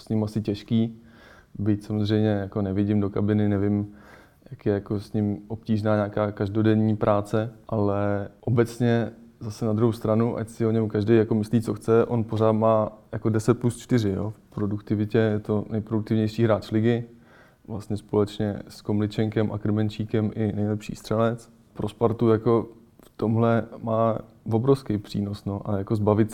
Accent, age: native, 20-39